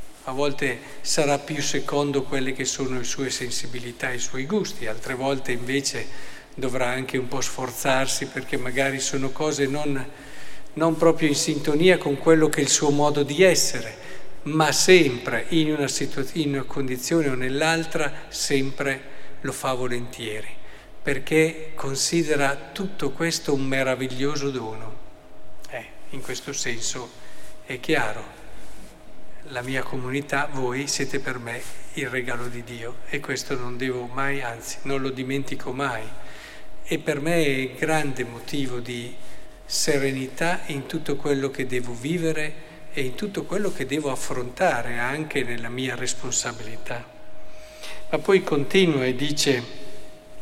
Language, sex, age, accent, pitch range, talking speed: Italian, male, 50-69, native, 130-155 Hz, 140 wpm